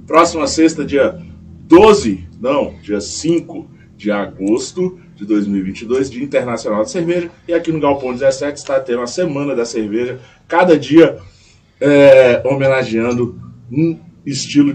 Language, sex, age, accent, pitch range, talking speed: Portuguese, male, 20-39, Brazilian, 110-140 Hz, 130 wpm